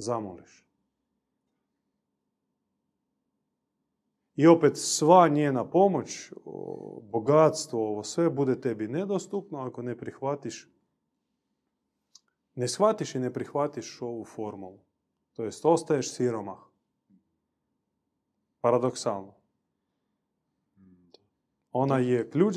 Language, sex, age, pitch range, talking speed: Croatian, male, 30-49, 115-170 Hz, 80 wpm